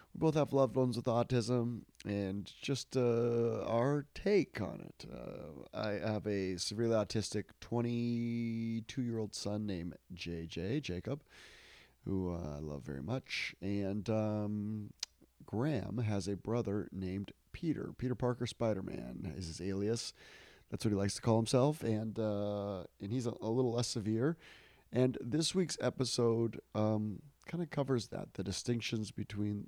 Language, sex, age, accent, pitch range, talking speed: English, male, 30-49, American, 105-125 Hz, 150 wpm